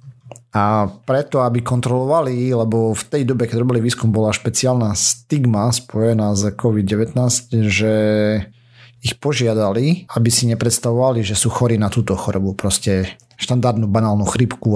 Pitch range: 110-125 Hz